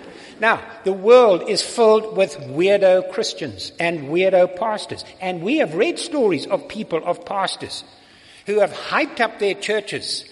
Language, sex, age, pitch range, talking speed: English, male, 60-79, 160-220 Hz, 150 wpm